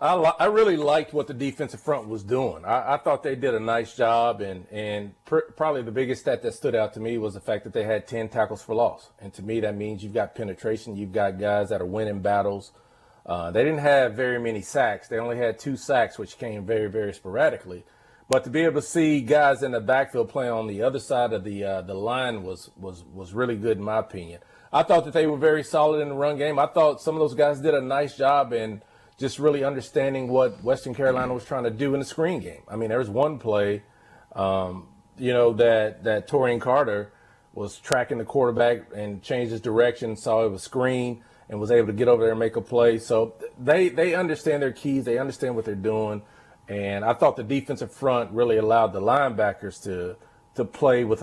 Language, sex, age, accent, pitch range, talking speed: English, male, 40-59, American, 105-140 Hz, 230 wpm